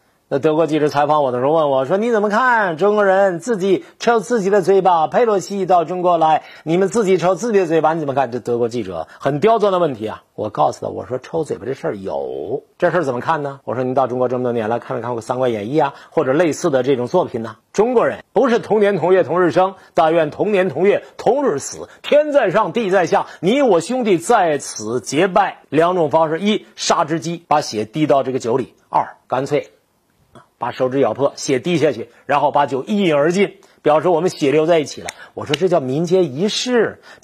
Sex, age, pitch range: male, 50-69, 135-195 Hz